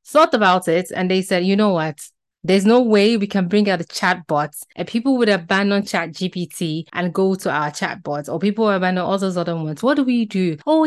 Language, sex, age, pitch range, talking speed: English, female, 20-39, 170-235 Hz, 245 wpm